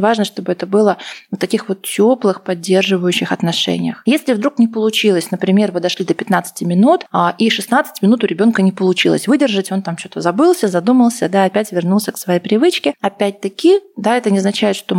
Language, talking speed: Russian, 185 wpm